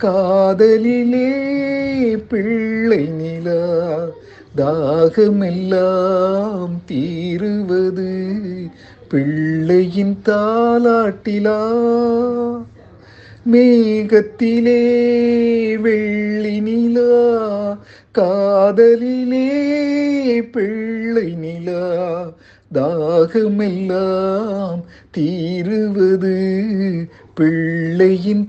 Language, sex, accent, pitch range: Tamil, male, native, 160-225 Hz